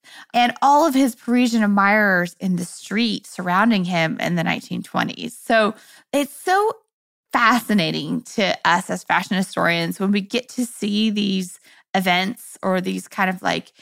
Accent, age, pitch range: American, 20-39, 185-240 Hz